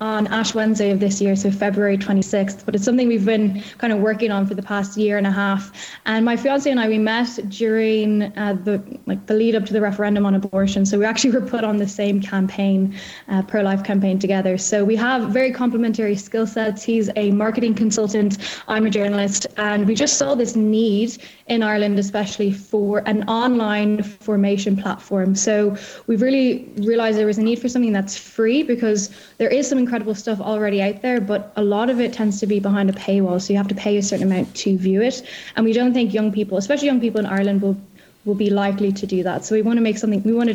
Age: 10-29